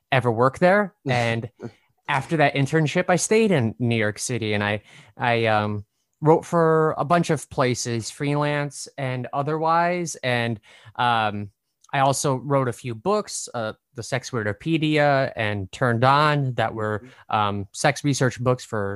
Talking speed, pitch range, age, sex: 150 wpm, 110-140 Hz, 20-39, male